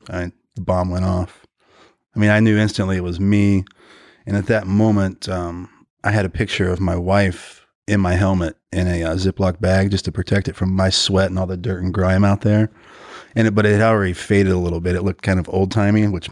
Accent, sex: American, male